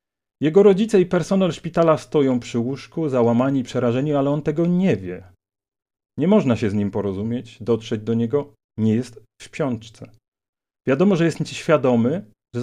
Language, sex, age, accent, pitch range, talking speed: Polish, male, 40-59, native, 110-150 Hz, 165 wpm